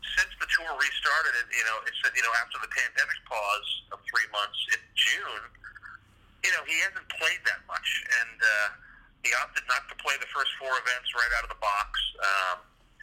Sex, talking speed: male, 205 wpm